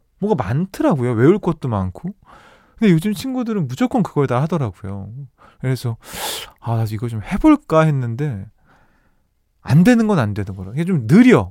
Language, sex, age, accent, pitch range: Korean, male, 20-39, native, 115-175 Hz